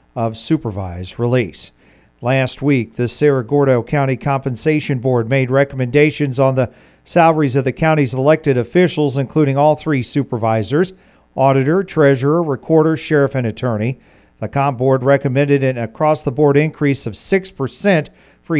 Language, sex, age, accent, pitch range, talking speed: English, male, 40-59, American, 130-165 Hz, 130 wpm